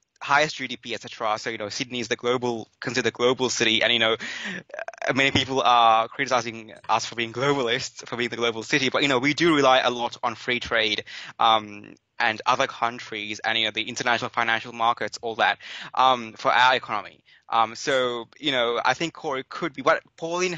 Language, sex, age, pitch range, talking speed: English, male, 20-39, 115-135 Hz, 200 wpm